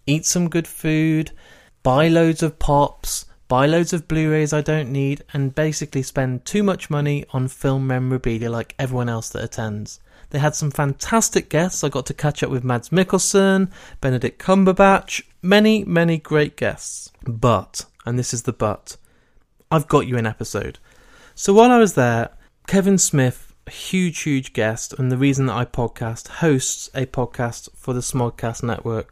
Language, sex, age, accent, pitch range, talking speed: English, male, 30-49, British, 120-160 Hz, 170 wpm